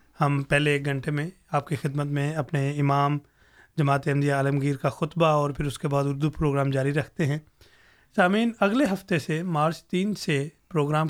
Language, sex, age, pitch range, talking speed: Urdu, male, 30-49, 145-185 Hz, 185 wpm